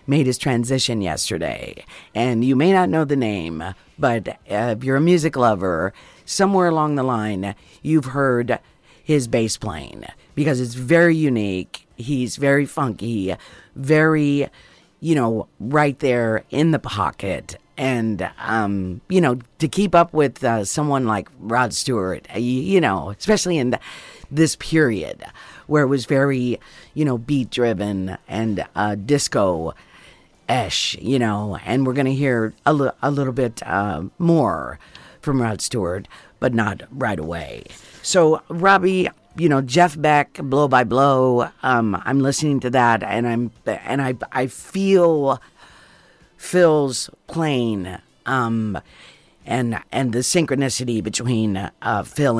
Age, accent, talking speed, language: 50-69, American, 140 wpm, English